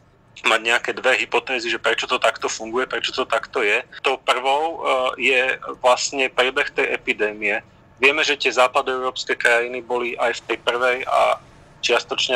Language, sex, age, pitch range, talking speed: Slovak, male, 40-59, 115-130 Hz, 155 wpm